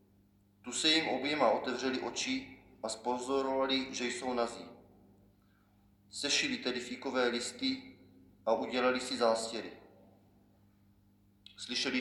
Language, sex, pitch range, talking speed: Czech, male, 100-145 Hz, 100 wpm